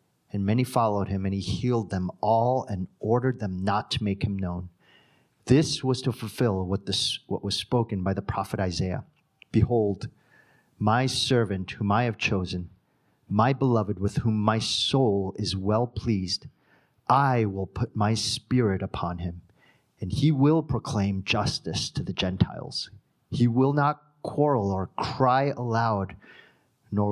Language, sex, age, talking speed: English, male, 40-59, 150 wpm